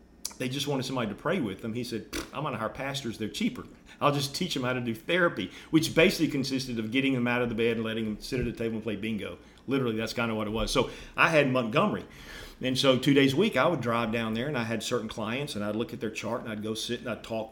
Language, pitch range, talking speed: English, 110-135 Hz, 290 wpm